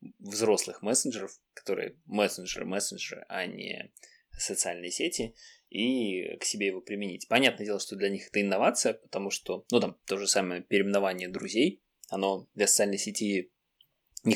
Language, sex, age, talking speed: Russian, male, 20-39, 140 wpm